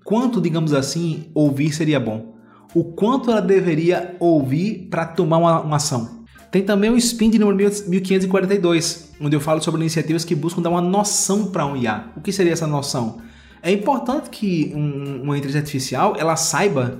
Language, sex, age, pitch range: Portuguese, male, 20-39, 150-205 Hz